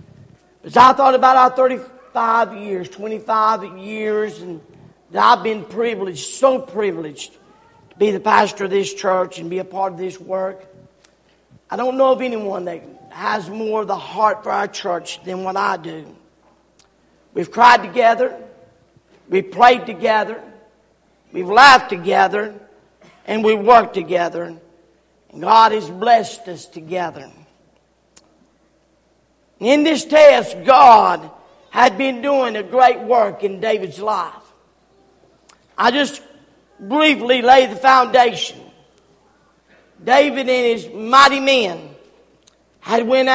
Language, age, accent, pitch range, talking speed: English, 50-69, American, 205-265 Hz, 125 wpm